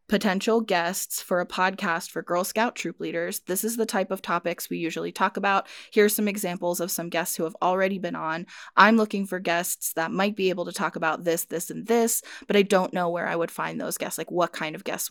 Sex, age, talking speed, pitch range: female, 20-39, 240 wpm, 175-220 Hz